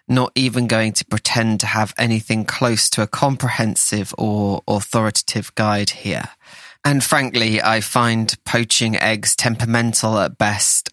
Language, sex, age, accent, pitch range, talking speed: English, male, 20-39, British, 105-120 Hz, 135 wpm